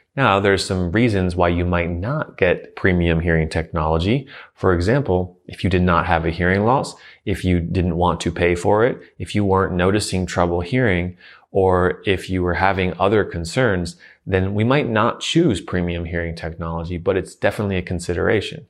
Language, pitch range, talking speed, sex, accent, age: English, 85-100 Hz, 180 wpm, male, American, 30-49